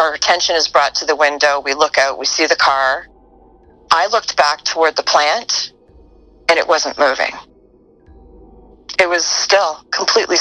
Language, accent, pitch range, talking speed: English, American, 150-175 Hz, 160 wpm